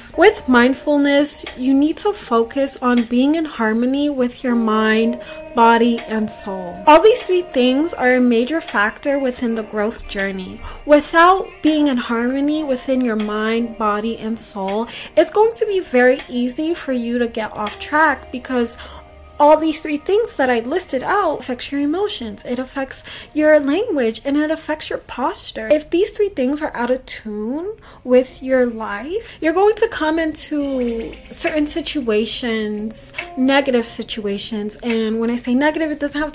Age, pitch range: 20-39, 230-310 Hz